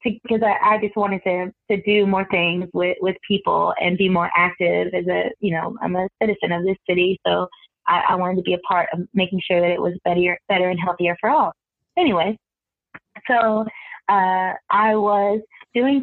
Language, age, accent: English, 20-39, American